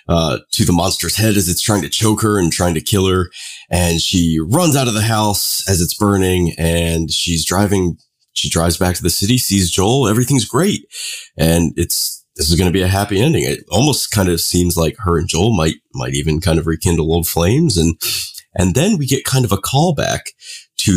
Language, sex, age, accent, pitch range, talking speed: English, male, 30-49, American, 80-100 Hz, 215 wpm